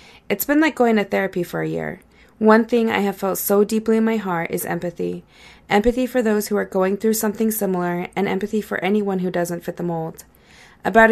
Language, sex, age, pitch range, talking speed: English, female, 20-39, 175-210 Hz, 215 wpm